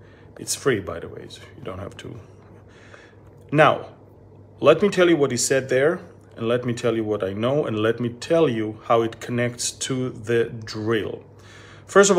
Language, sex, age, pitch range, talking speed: English, male, 40-59, 110-135 Hz, 195 wpm